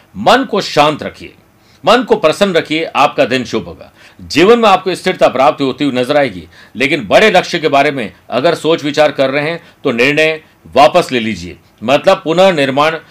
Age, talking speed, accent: 50-69, 185 wpm, native